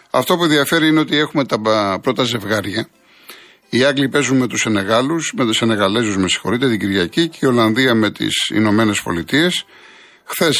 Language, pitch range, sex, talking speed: Greek, 115-145 Hz, male, 170 wpm